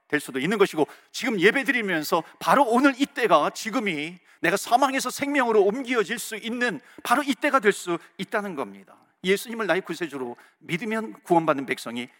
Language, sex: Korean, male